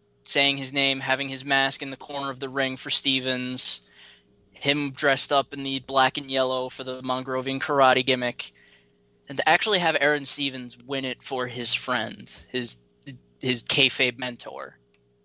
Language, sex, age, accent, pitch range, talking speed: English, male, 10-29, American, 125-150 Hz, 165 wpm